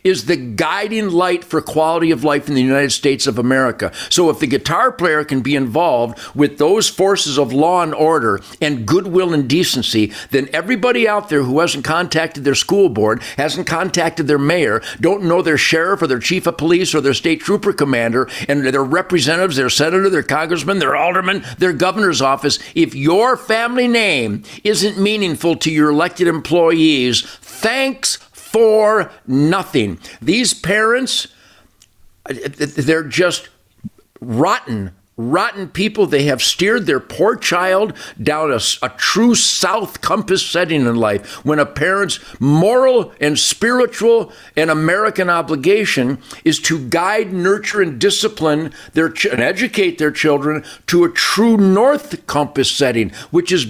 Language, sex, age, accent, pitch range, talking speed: English, male, 50-69, American, 145-195 Hz, 150 wpm